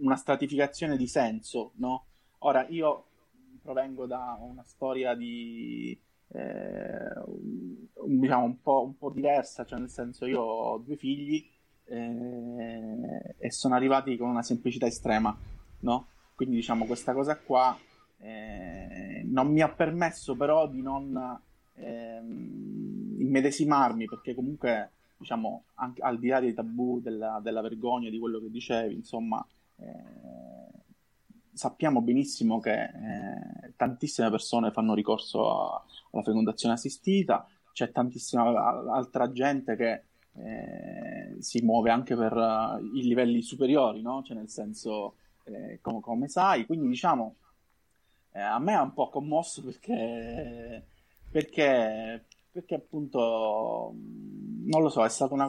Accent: native